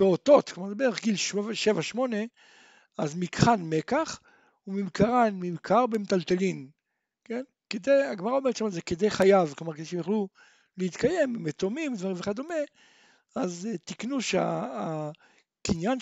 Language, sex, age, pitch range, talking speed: Hebrew, male, 60-79, 190-265 Hz, 120 wpm